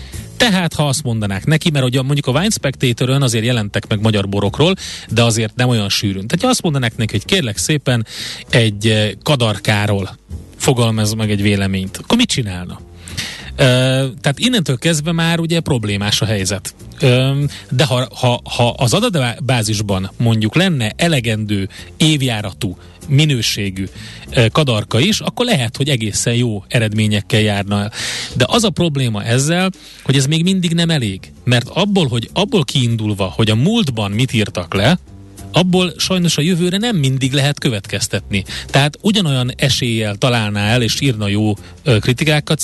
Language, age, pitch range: Hungarian, 30-49, 110-150 Hz